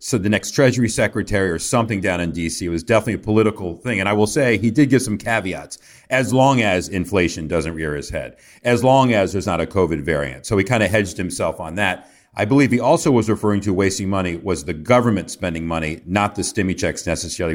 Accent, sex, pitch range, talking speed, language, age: American, male, 90-110 Hz, 230 wpm, English, 40-59